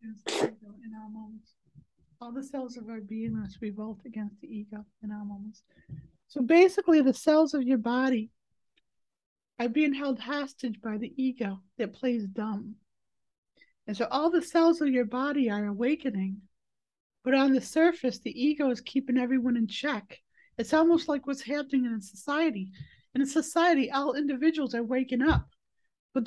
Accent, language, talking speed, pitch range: American, English, 165 wpm, 235-280 Hz